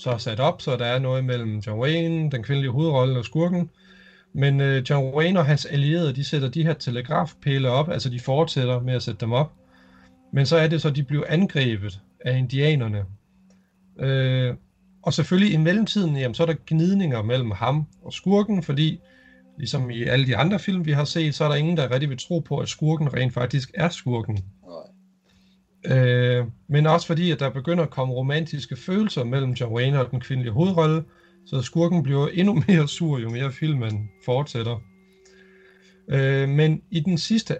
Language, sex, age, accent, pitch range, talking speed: Danish, male, 40-59, native, 125-165 Hz, 185 wpm